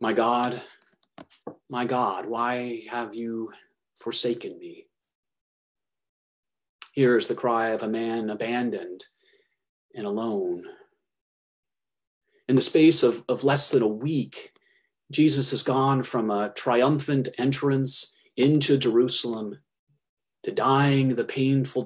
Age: 30-49